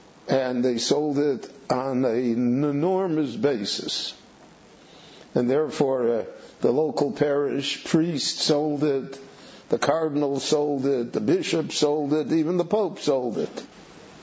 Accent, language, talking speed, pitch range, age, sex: American, English, 125 wpm, 125-155 Hz, 60-79, male